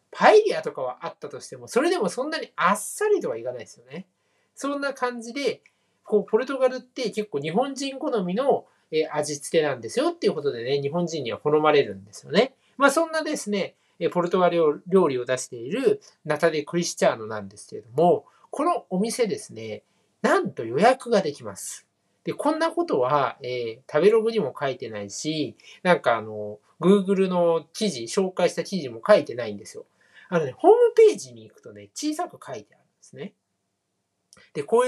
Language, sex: Japanese, male